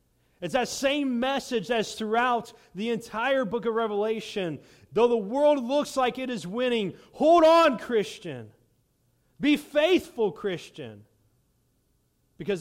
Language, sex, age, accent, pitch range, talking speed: English, male, 40-59, American, 160-220 Hz, 125 wpm